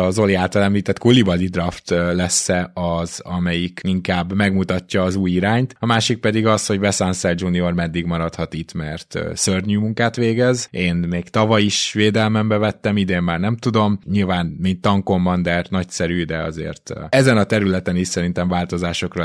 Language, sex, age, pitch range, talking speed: Hungarian, male, 20-39, 90-105 Hz, 155 wpm